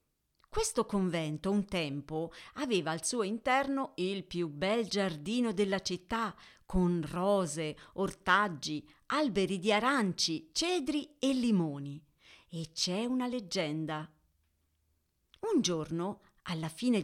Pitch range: 170-250 Hz